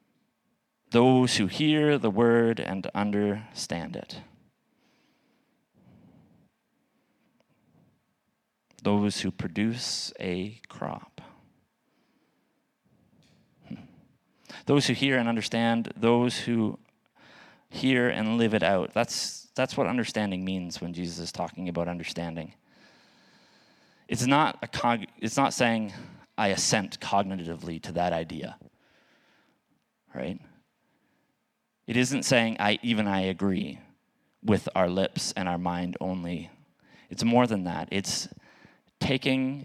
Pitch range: 95-120 Hz